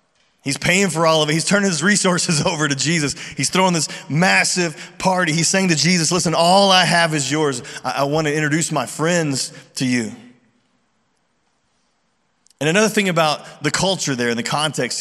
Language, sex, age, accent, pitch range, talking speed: English, male, 30-49, American, 145-175 Hz, 190 wpm